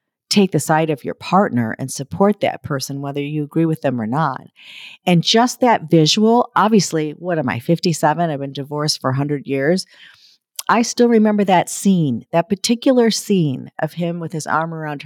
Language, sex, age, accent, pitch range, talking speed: English, female, 50-69, American, 140-185 Hz, 185 wpm